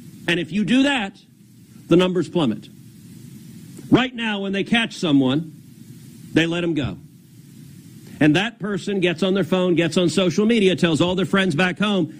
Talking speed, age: 170 wpm, 50-69